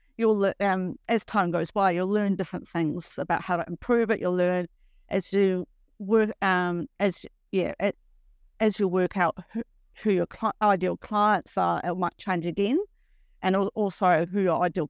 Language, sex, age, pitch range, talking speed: English, female, 50-69, 175-205 Hz, 170 wpm